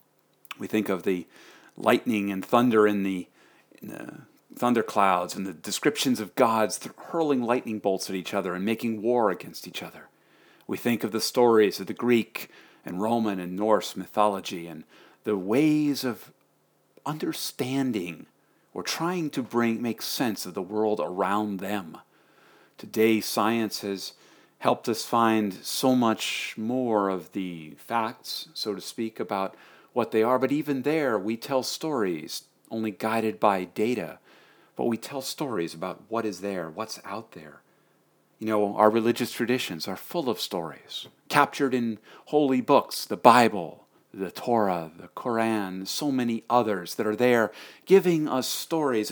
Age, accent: 50-69, American